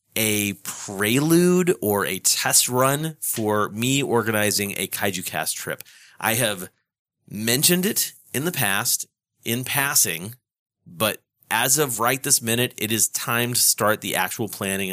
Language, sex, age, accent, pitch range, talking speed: English, male, 30-49, American, 100-130 Hz, 145 wpm